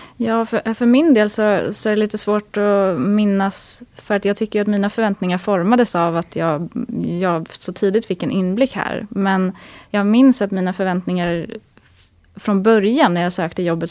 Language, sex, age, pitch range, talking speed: Swedish, female, 20-39, 170-210 Hz, 185 wpm